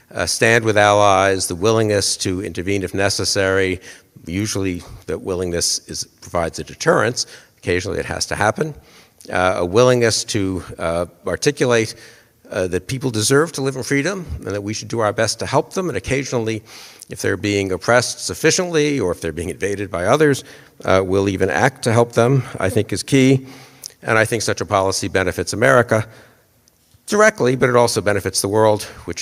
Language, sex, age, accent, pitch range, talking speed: English, male, 50-69, American, 95-125 Hz, 175 wpm